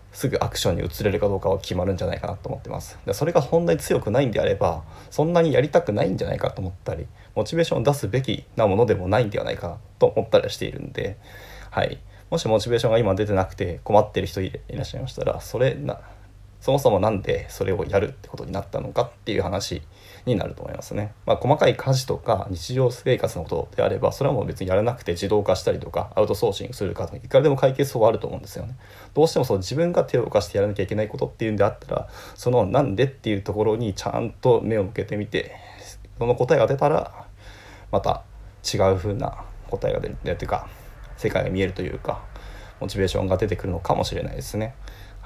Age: 20-39